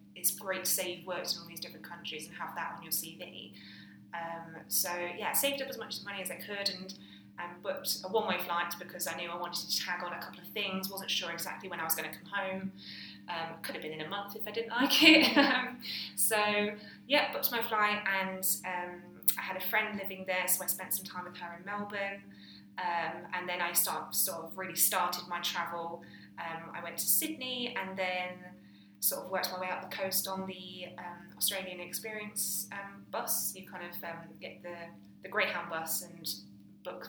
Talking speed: 220 wpm